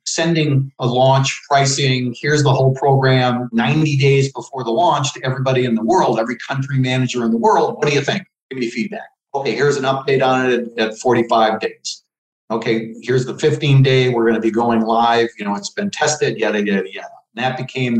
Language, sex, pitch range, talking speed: English, male, 115-140 Hz, 205 wpm